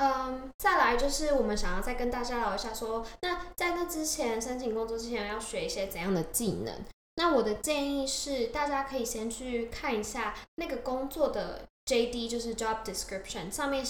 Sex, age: female, 10-29